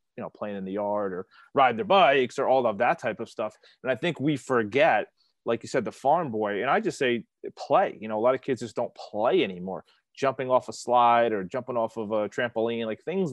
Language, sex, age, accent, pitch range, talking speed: English, male, 30-49, American, 110-130 Hz, 250 wpm